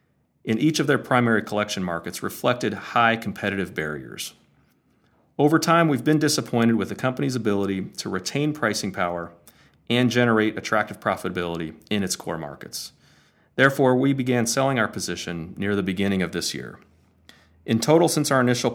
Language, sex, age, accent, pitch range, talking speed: English, male, 40-59, American, 95-125 Hz, 155 wpm